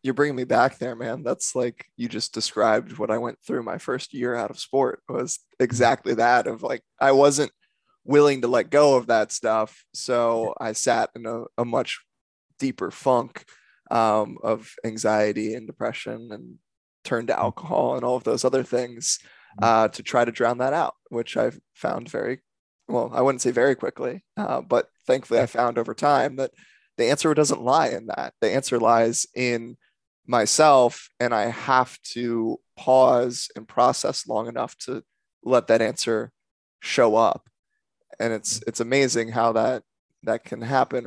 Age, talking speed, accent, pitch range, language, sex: 20-39, 175 wpm, American, 115-130 Hz, English, male